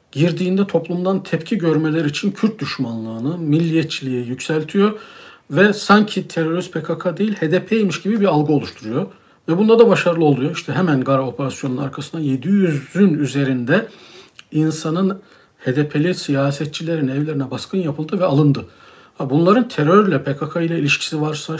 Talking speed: 125 wpm